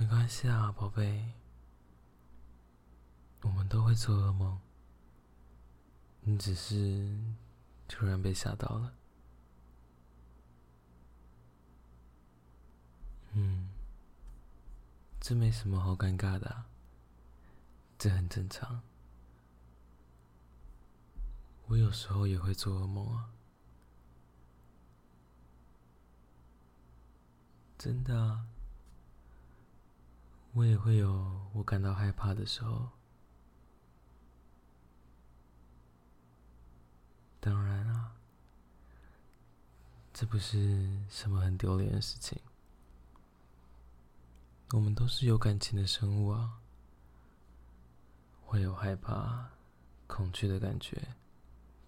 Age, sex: 20-39, male